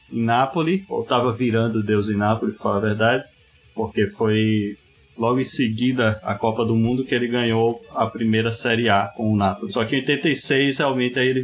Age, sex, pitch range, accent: 20-39, male, 115-155 Hz, Brazilian